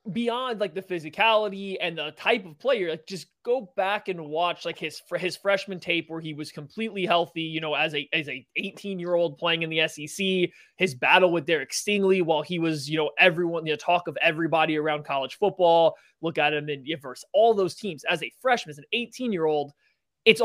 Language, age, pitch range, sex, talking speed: English, 20-39, 155-195 Hz, male, 225 wpm